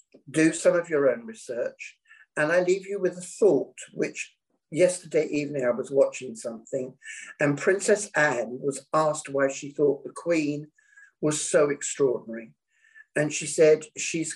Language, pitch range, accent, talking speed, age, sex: English, 140-175 Hz, British, 155 wpm, 50-69, male